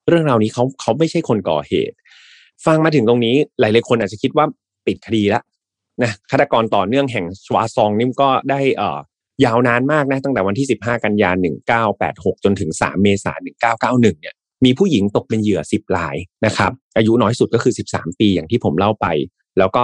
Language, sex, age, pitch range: Thai, male, 30-49, 100-140 Hz